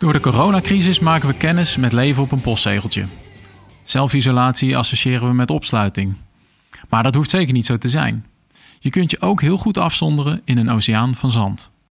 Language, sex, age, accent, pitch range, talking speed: Dutch, male, 40-59, Dutch, 115-145 Hz, 180 wpm